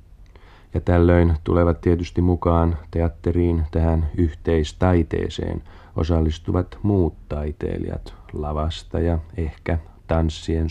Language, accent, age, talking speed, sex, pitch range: Finnish, native, 40-59, 80 wpm, male, 75-95 Hz